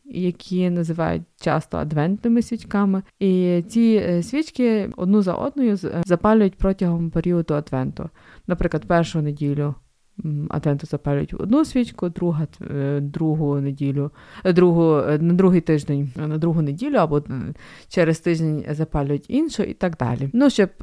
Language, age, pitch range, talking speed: Ukrainian, 20-39, 165-205 Hz, 125 wpm